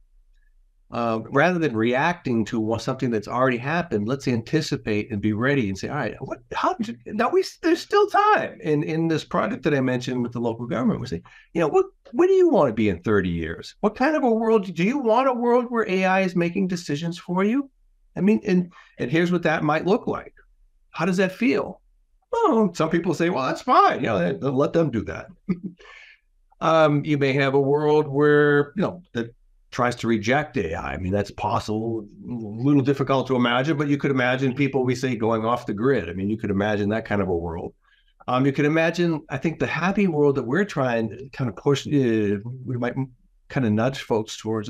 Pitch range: 115-180 Hz